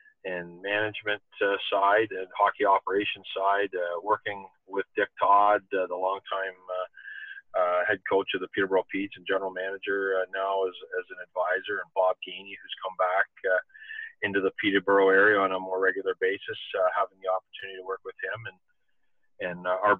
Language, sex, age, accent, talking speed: English, male, 40-59, American, 185 wpm